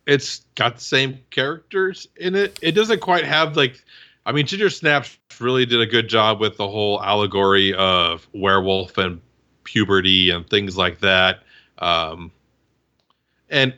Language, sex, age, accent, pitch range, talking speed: English, male, 40-59, American, 110-145 Hz, 155 wpm